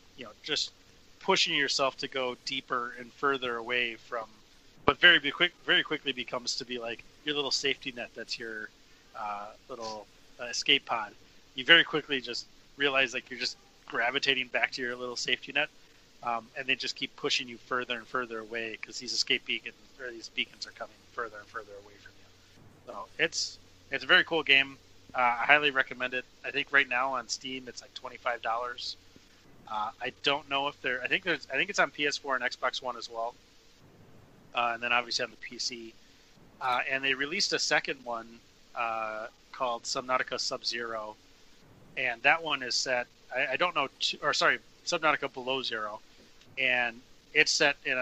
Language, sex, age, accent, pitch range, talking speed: English, male, 30-49, American, 115-135 Hz, 190 wpm